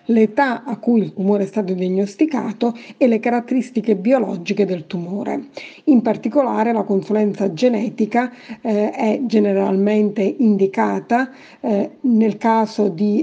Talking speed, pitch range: 120 wpm, 205-240 Hz